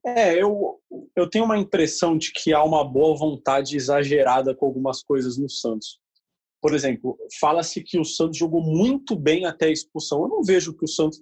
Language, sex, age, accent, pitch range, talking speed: Portuguese, male, 20-39, Brazilian, 140-205 Hz, 195 wpm